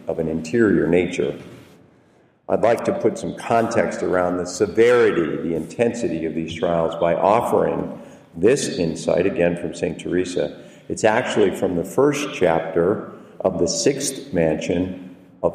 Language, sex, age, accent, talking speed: English, male, 50-69, American, 145 wpm